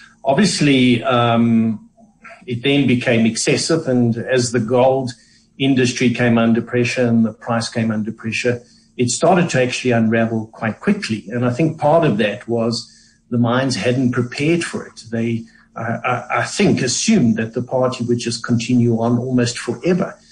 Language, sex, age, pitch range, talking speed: English, male, 60-79, 115-135 Hz, 160 wpm